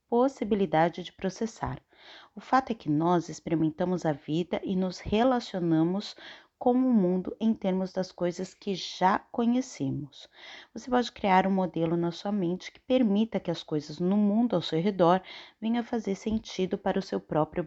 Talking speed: 170 wpm